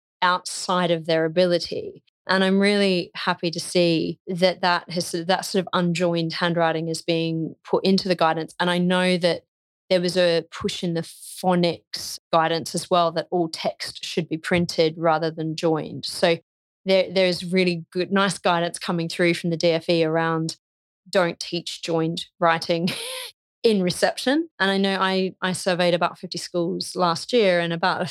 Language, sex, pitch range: English, female, 165-185 Hz